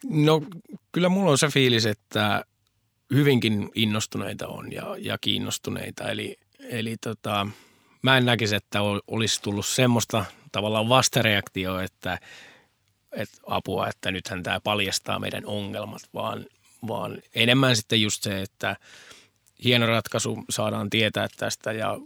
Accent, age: native, 20-39